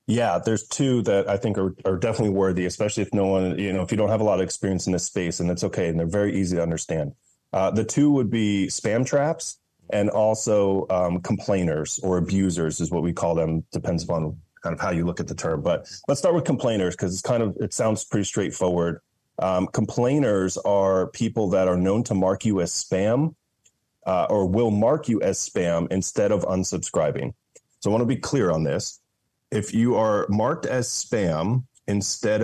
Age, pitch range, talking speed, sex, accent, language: 30-49, 90-110 Hz, 210 wpm, male, American, English